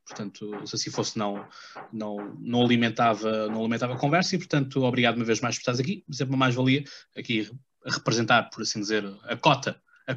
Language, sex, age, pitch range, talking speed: Portuguese, male, 20-39, 110-135 Hz, 185 wpm